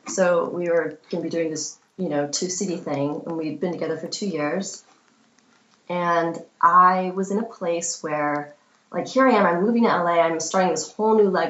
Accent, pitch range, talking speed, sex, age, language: American, 160-195 Hz, 210 wpm, female, 20-39, English